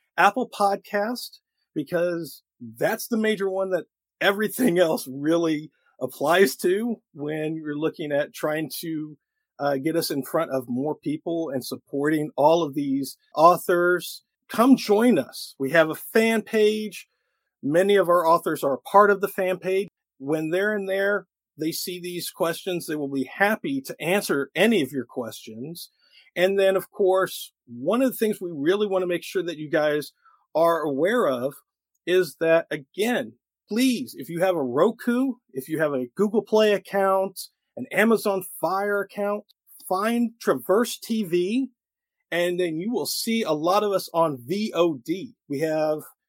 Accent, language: American, English